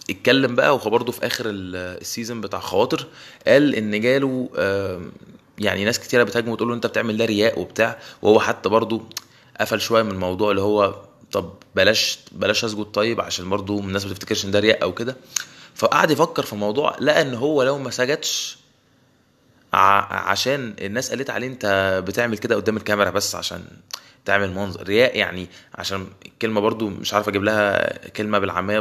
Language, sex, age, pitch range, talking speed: Arabic, male, 20-39, 100-125 Hz, 160 wpm